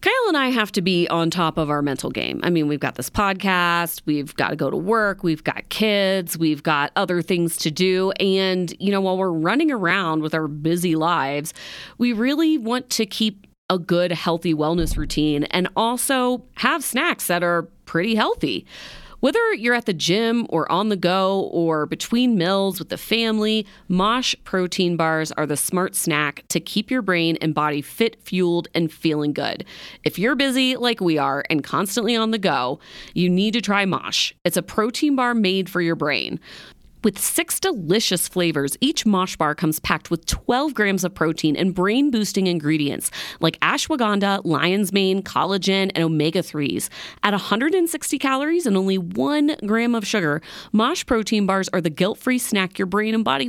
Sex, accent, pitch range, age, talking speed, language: female, American, 165-225 Hz, 30-49, 185 wpm, English